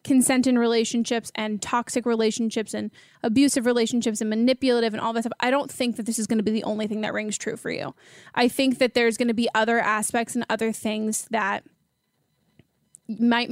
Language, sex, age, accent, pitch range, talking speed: English, female, 20-39, American, 220-255 Hz, 200 wpm